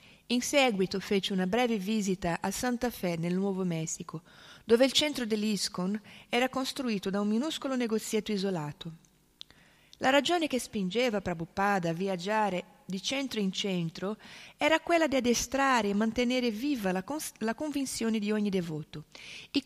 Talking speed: 145 wpm